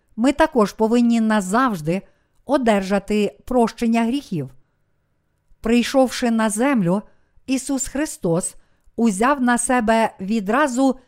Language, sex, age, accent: Ukrainian, female, 50-69, native